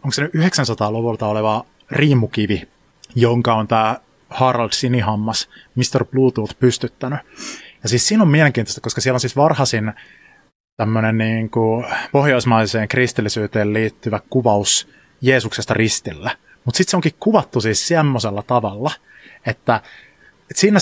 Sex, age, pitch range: male, 30-49, 110-135 Hz